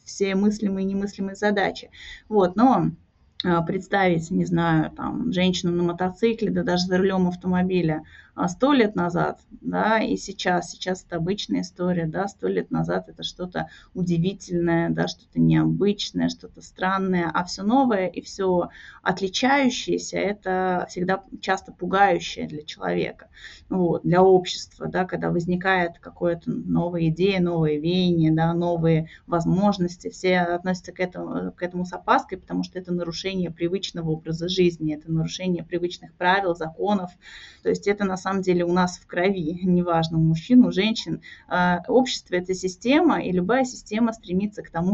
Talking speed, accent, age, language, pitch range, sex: 150 wpm, native, 20-39, Russian, 175-205 Hz, female